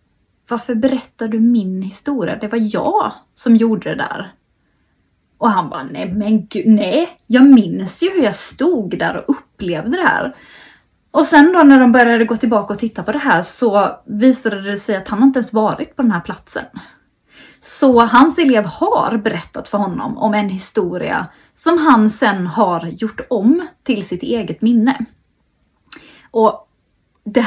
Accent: native